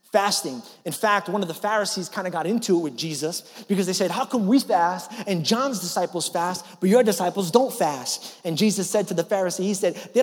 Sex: male